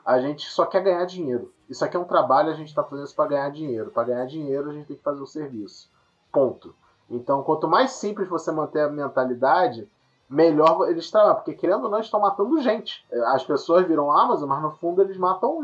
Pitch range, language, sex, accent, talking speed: 150-225 Hz, Portuguese, male, Brazilian, 225 wpm